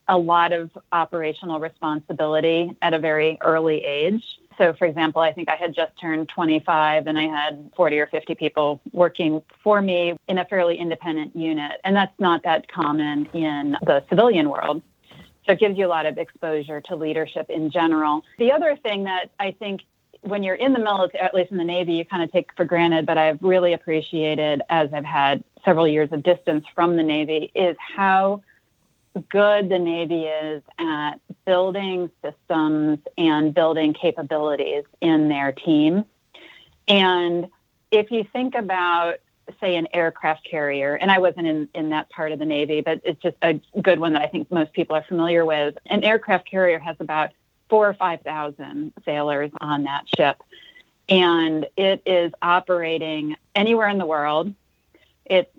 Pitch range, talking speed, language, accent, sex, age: 155-185 Hz, 175 wpm, English, American, female, 30-49